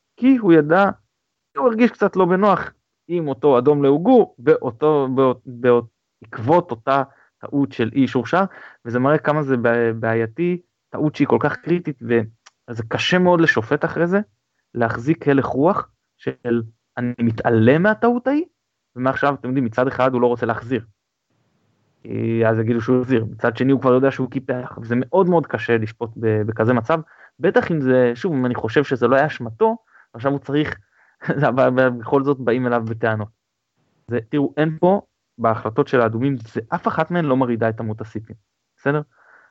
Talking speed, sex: 160 wpm, male